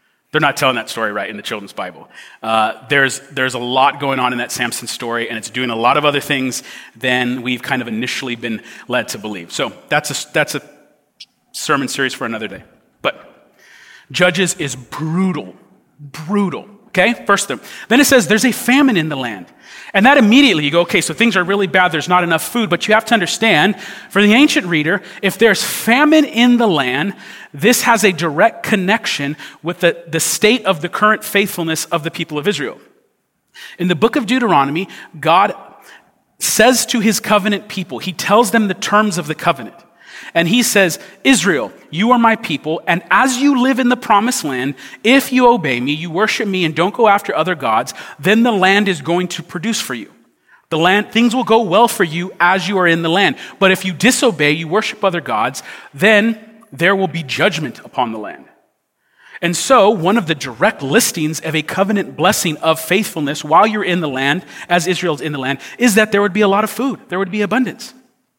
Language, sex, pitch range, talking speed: English, male, 155-220 Hz, 205 wpm